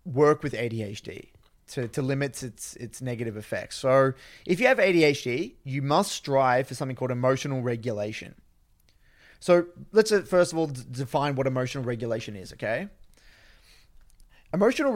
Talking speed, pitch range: 140 wpm, 125-155 Hz